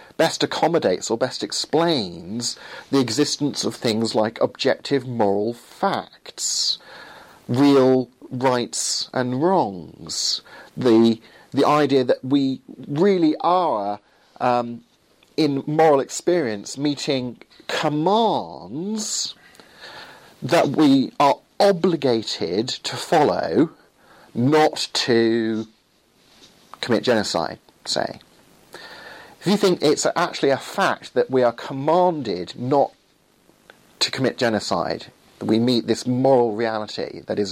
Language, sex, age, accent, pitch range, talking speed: English, male, 40-59, British, 115-155 Hz, 100 wpm